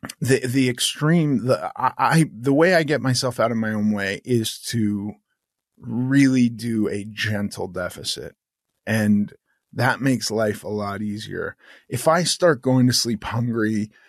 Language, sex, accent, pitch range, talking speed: English, male, American, 105-125 Hz, 160 wpm